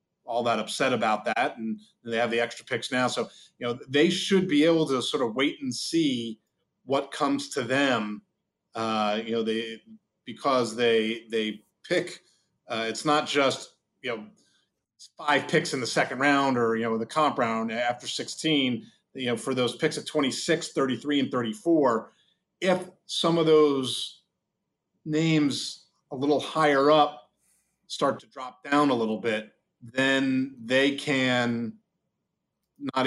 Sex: male